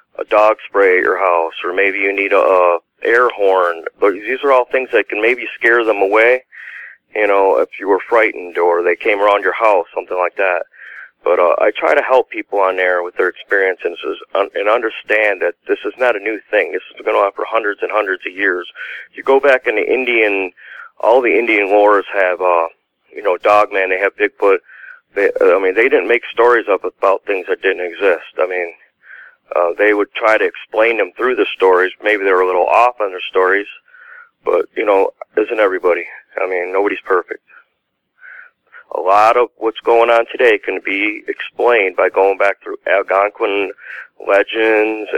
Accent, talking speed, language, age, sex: American, 200 wpm, English, 40-59, male